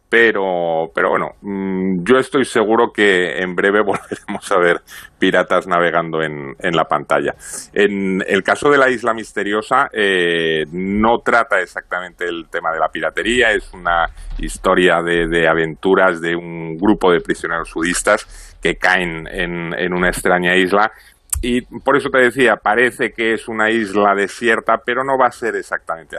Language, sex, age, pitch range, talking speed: Spanish, male, 40-59, 90-110 Hz, 160 wpm